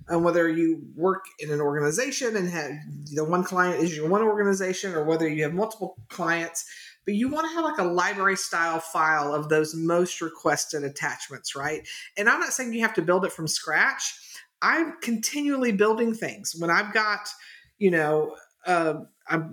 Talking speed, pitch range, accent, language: 180 wpm, 165-210 Hz, American, English